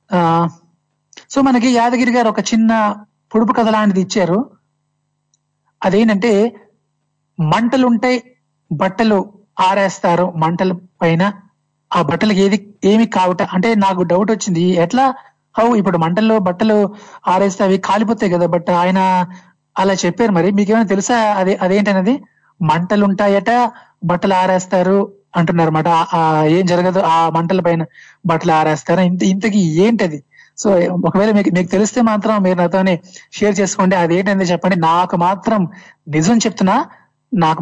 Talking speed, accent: 125 wpm, native